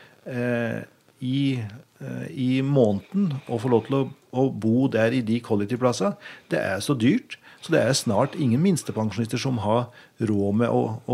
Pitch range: 110-130 Hz